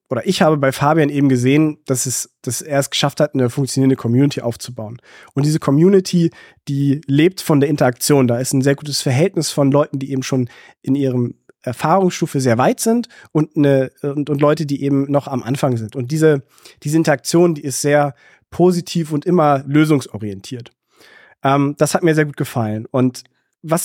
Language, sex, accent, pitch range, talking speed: German, male, German, 135-175 Hz, 180 wpm